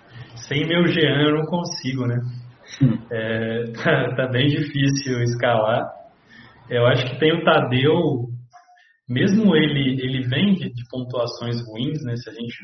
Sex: male